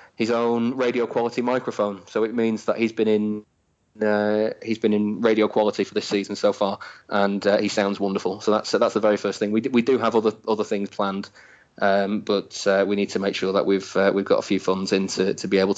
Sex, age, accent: male, 20-39, British